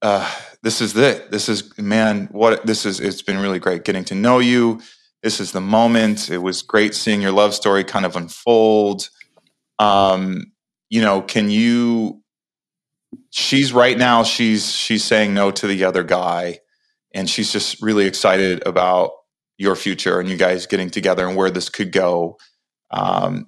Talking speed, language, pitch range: 170 wpm, English, 95-110 Hz